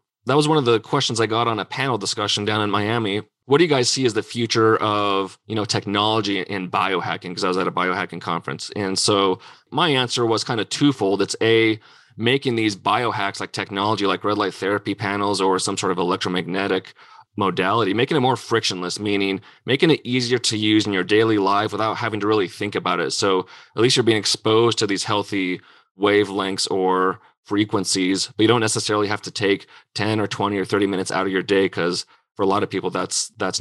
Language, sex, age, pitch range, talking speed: English, male, 30-49, 95-110 Hz, 215 wpm